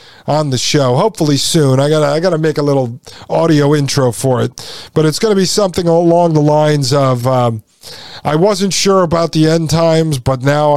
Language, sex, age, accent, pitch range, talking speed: English, male, 50-69, American, 135-165 Hz, 195 wpm